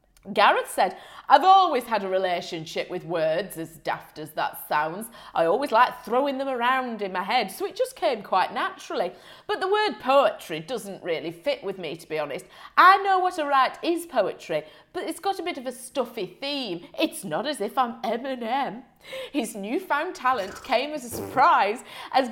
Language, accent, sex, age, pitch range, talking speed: English, British, female, 30-49, 190-310 Hz, 195 wpm